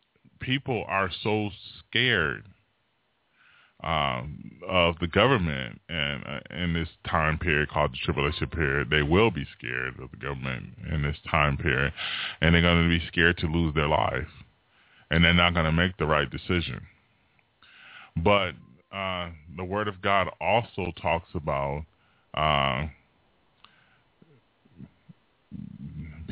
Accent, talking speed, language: American, 130 wpm, English